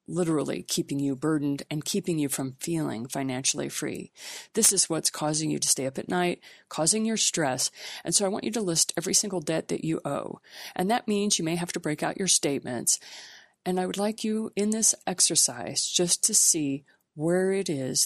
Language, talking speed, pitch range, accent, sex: English, 205 wpm, 150-190 Hz, American, female